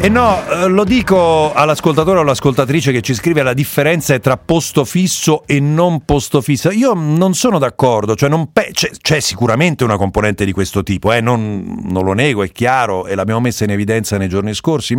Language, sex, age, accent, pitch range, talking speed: Italian, male, 40-59, native, 115-165 Hz, 200 wpm